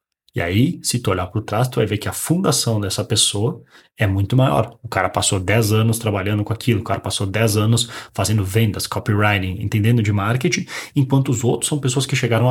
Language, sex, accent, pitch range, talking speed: Portuguese, male, Brazilian, 105-135 Hz, 215 wpm